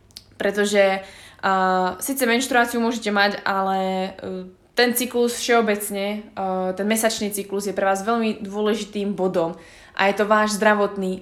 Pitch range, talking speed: 195-235 Hz, 140 wpm